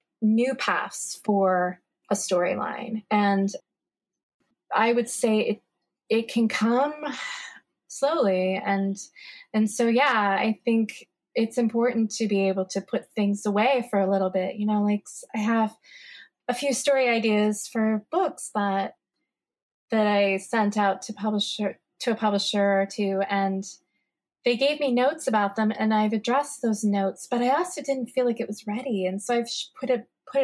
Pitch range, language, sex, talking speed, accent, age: 200-245 Hz, English, female, 165 wpm, American, 20-39